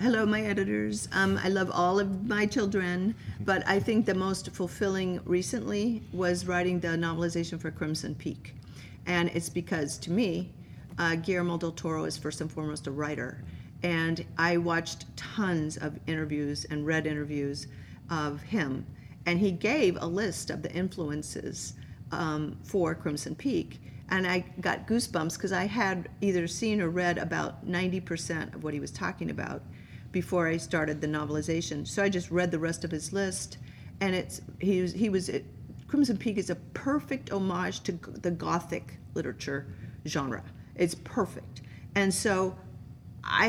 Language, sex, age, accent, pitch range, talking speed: English, female, 40-59, American, 150-185 Hz, 160 wpm